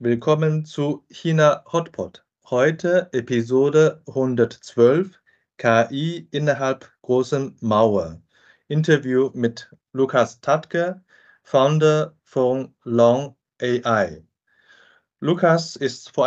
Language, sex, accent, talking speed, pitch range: German, male, German, 80 wpm, 125-155 Hz